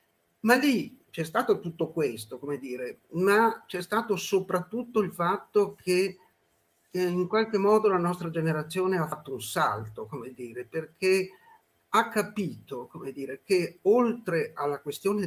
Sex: male